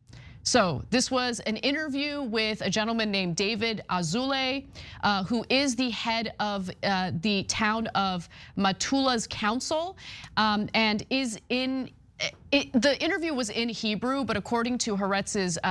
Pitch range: 185-260 Hz